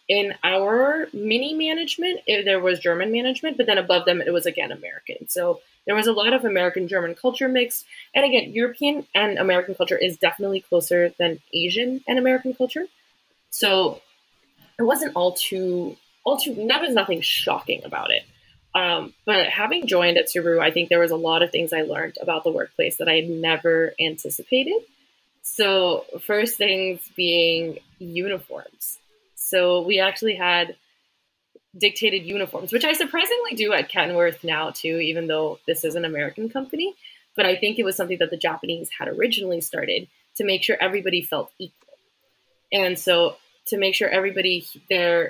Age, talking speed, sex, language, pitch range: 20-39, 170 wpm, female, English, 175-255 Hz